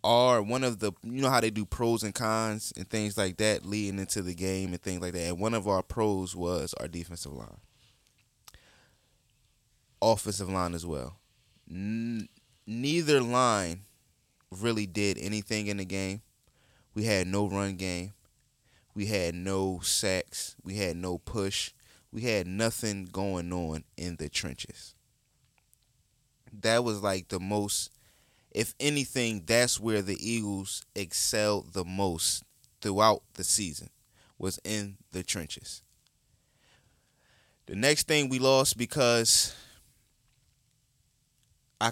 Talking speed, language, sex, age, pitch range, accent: 135 wpm, English, male, 20-39, 95-120 Hz, American